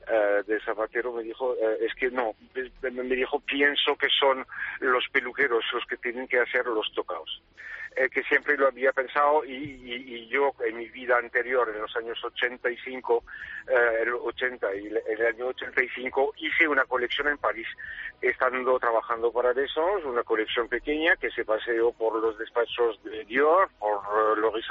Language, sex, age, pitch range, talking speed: Spanish, male, 50-69, 120-145 Hz, 175 wpm